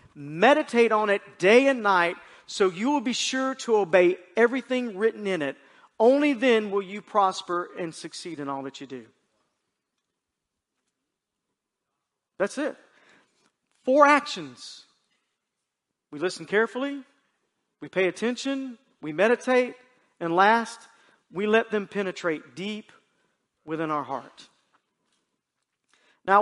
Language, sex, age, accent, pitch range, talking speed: English, male, 40-59, American, 170-225 Hz, 120 wpm